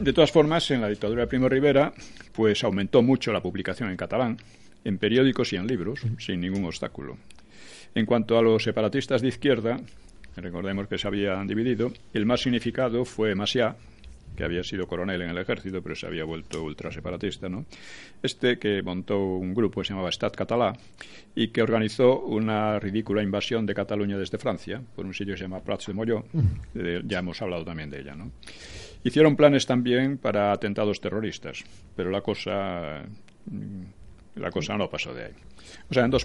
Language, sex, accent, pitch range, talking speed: Spanish, male, Spanish, 95-125 Hz, 180 wpm